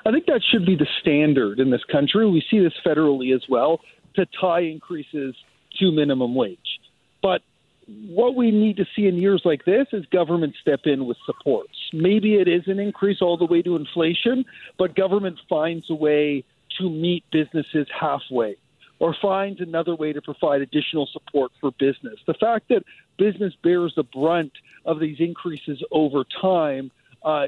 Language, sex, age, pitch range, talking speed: English, male, 50-69, 155-195 Hz, 175 wpm